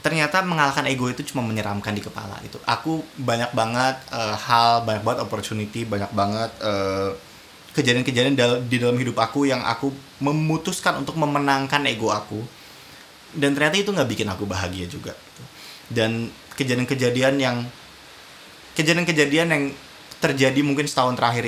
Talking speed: 130 wpm